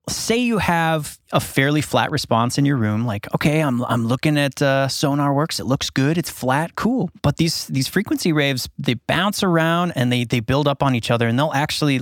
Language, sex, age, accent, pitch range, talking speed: English, male, 30-49, American, 120-150 Hz, 220 wpm